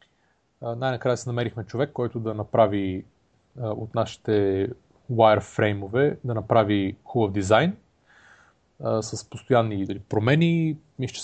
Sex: male